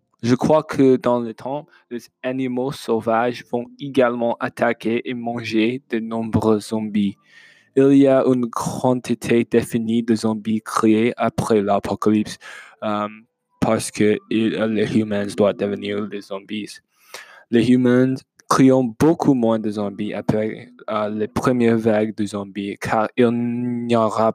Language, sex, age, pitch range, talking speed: French, male, 20-39, 110-130 Hz, 135 wpm